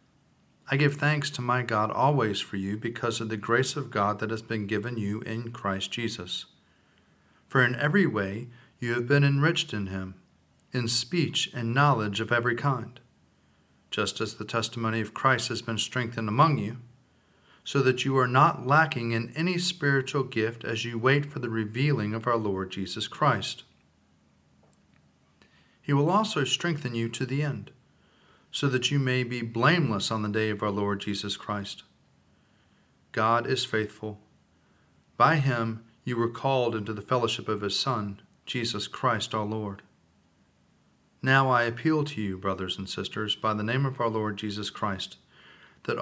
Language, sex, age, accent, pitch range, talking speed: English, male, 40-59, American, 105-135 Hz, 170 wpm